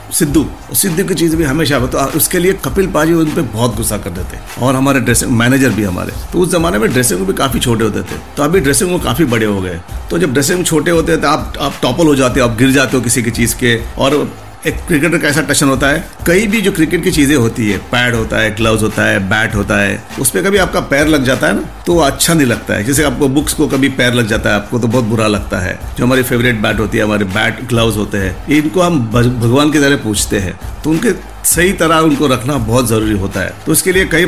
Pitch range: 110-150 Hz